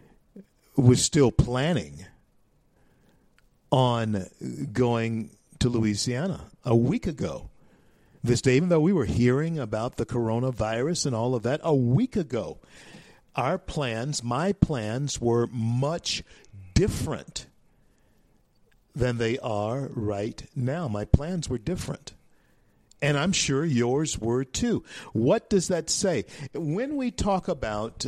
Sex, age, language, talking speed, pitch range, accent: male, 50-69, English, 120 wpm, 115-150 Hz, American